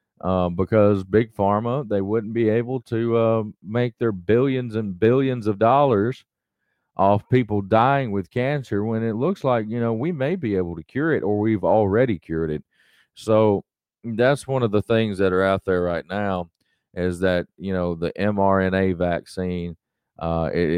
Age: 40-59